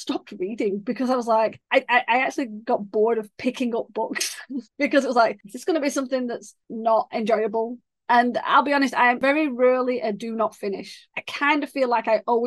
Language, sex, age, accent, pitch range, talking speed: English, female, 30-49, British, 215-280 Hz, 215 wpm